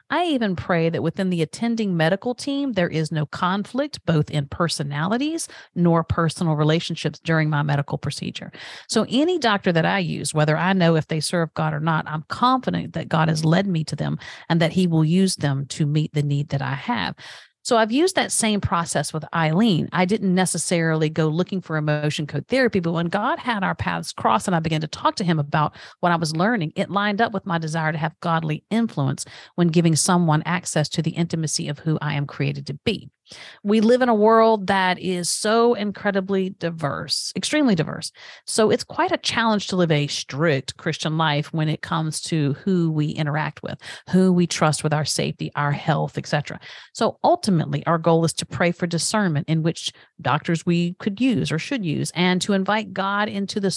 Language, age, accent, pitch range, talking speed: English, 40-59, American, 155-195 Hz, 205 wpm